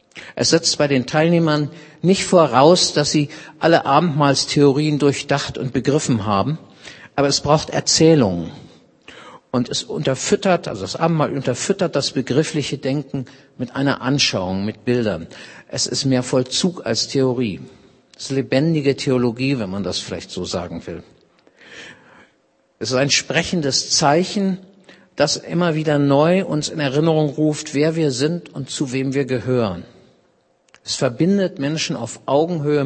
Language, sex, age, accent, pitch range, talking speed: German, male, 50-69, German, 130-155 Hz, 140 wpm